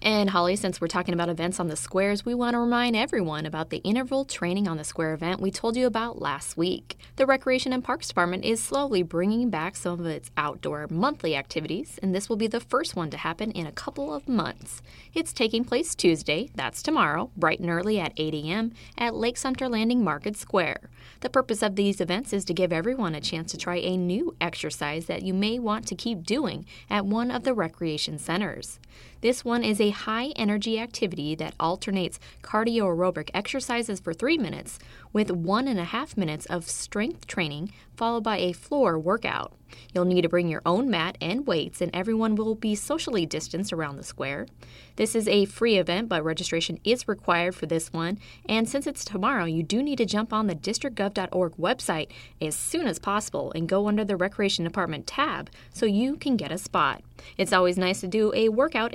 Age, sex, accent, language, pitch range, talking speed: 20-39, female, American, English, 175-230 Hz, 205 wpm